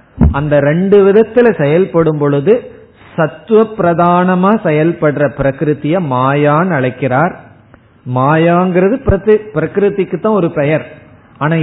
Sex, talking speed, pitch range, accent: male, 90 wpm, 130-175 Hz, native